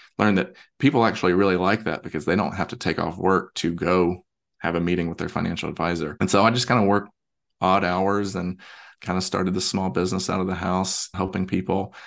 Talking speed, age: 230 wpm, 30-49